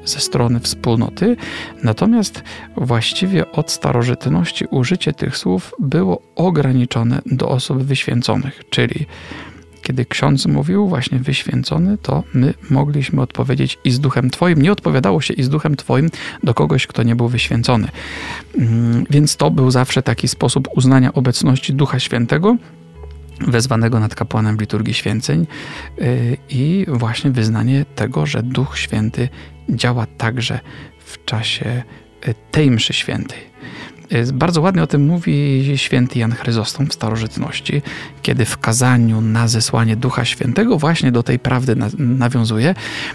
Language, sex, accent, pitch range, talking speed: Polish, male, native, 115-145 Hz, 130 wpm